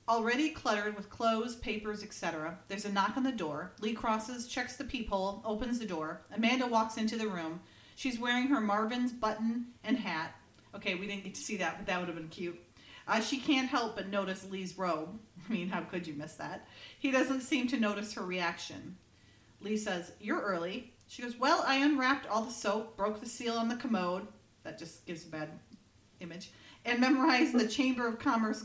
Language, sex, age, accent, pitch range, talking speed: English, female, 40-59, American, 180-235 Hz, 205 wpm